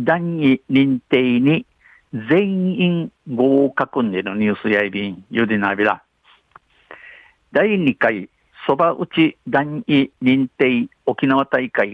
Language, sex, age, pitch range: Japanese, male, 50-69, 120-155 Hz